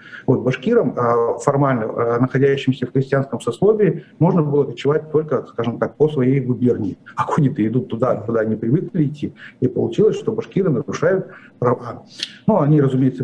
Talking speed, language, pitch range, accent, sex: 150 wpm, Russian, 125-155 Hz, native, male